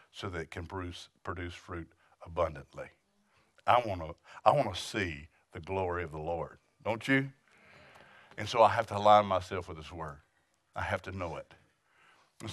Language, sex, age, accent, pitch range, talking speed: English, male, 50-69, American, 90-130 Hz, 170 wpm